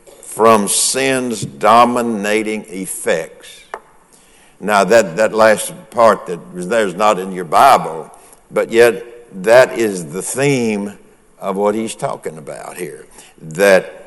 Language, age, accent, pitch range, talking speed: English, 60-79, American, 105-130 Hz, 120 wpm